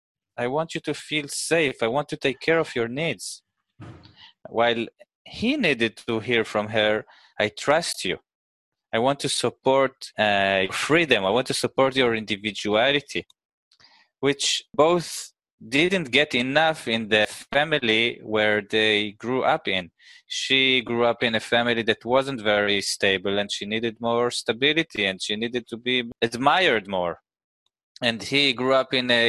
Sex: male